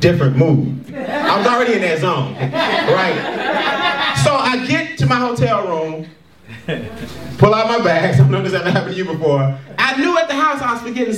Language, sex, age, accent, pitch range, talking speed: English, male, 30-49, American, 165-265 Hz, 195 wpm